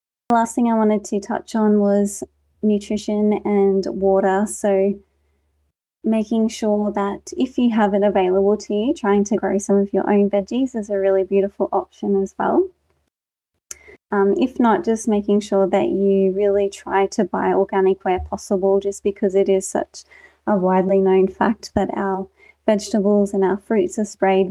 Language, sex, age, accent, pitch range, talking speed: English, female, 20-39, Australian, 195-210 Hz, 170 wpm